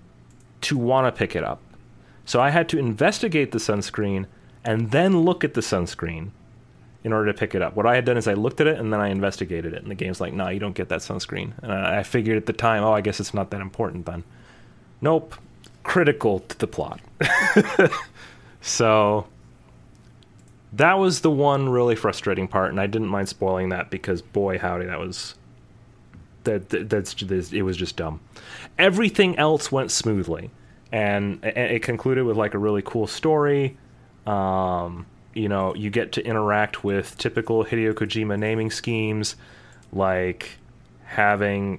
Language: English